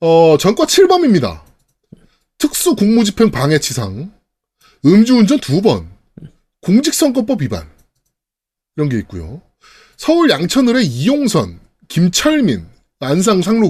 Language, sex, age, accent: Korean, male, 20-39, native